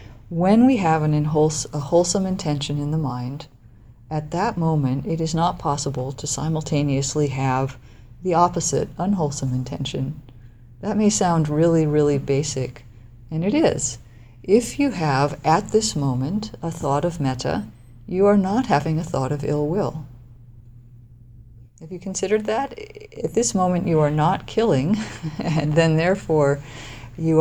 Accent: American